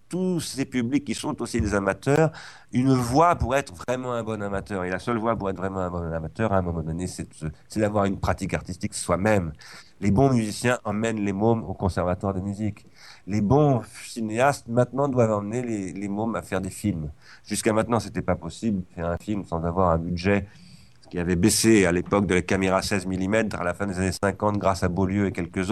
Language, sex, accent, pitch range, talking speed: French, male, French, 90-115 Hz, 225 wpm